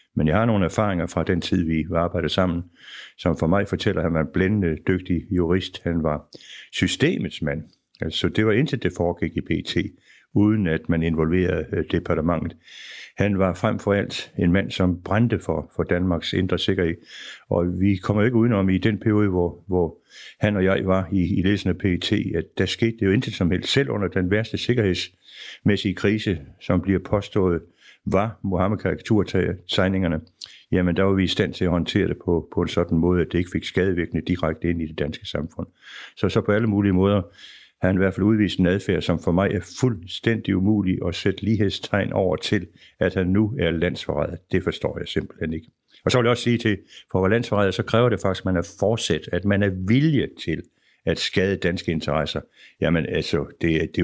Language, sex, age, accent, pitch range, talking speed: Danish, male, 60-79, native, 85-100 Hz, 205 wpm